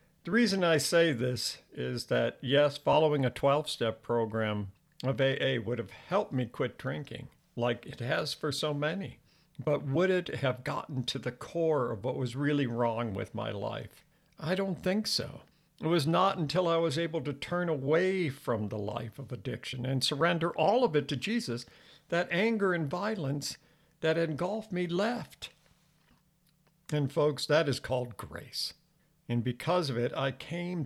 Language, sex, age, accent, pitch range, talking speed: English, male, 60-79, American, 130-170 Hz, 170 wpm